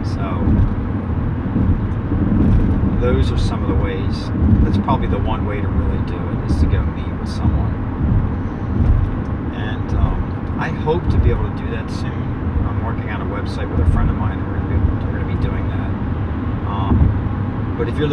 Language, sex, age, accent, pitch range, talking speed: English, male, 40-59, American, 90-110 Hz, 180 wpm